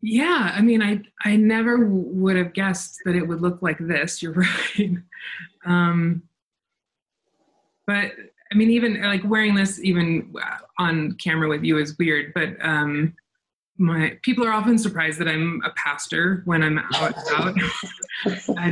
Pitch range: 155-195 Hz